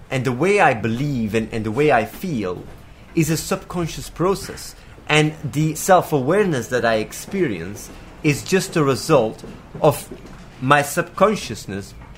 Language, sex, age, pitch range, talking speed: English, male, 30-49, 120-160 Hz, 140 wpm